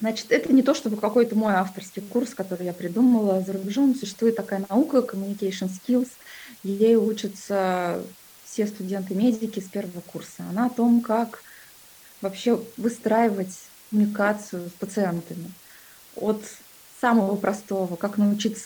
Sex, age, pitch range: female, 20-39, 185-225 Hz